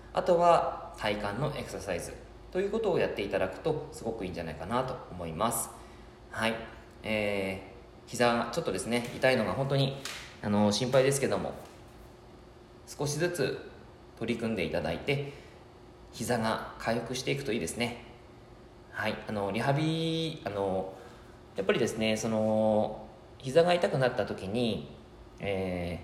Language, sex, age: Japanese, male, 20-39